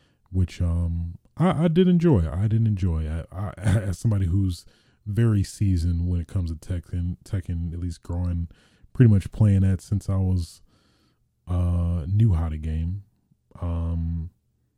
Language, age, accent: English, 20-39, American